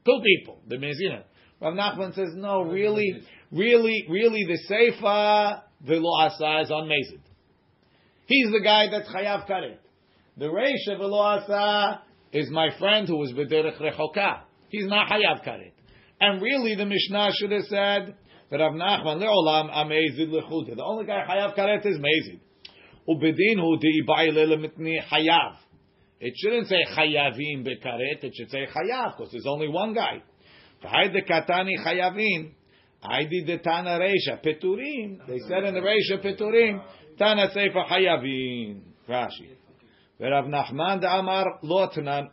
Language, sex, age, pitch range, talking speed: English, male, 40-59, 155-200 Hz, 140 wpm